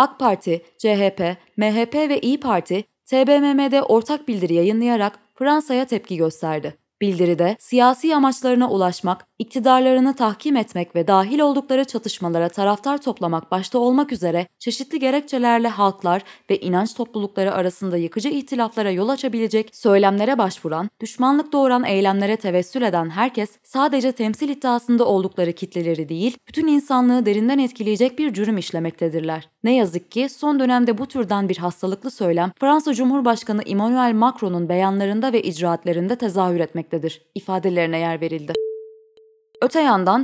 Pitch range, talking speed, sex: 185-260 Hz, 130 wpm, female